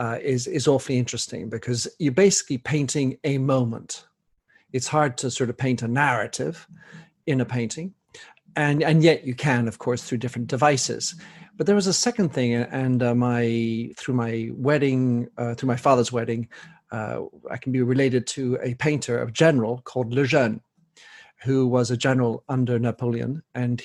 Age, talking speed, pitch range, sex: 50-69, 175 wpm, 125-160 Hz, male